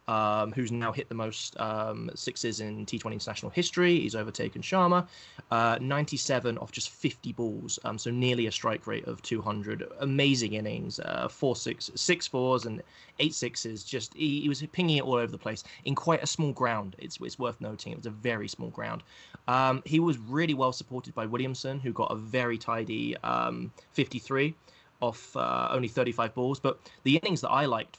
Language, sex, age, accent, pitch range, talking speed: English, male, 20-39, British, 115-145 Hz, 195 wpm